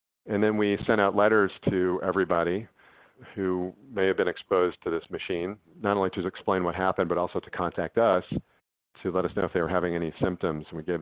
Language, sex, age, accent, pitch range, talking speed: English, male, 50-69, American, 85-100 Hz, 220 wpm